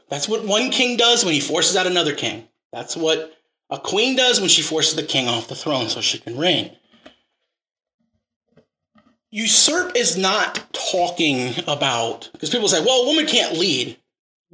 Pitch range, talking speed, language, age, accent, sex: 175-255 Hz, 175 wpm, English, 30-49, American, male